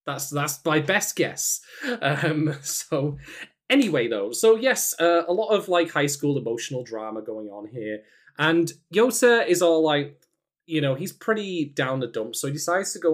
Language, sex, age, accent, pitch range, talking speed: English, male, 20-39, British, 125-175 Hz, 185 wpm